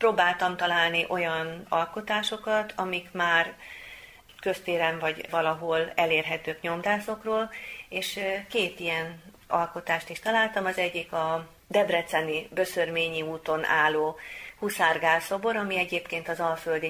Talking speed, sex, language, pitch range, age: 105 wpm, female, Hungarian, 160-190 Hz, 30-49